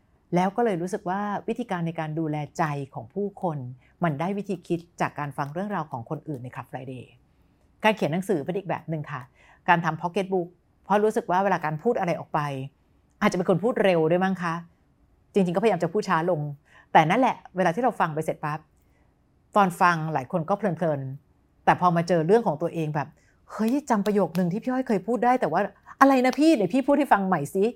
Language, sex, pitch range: English, female, 150-200 Hz